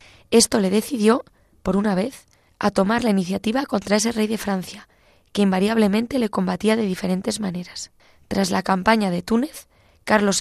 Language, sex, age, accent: Spanish, female, 20-39, Spanish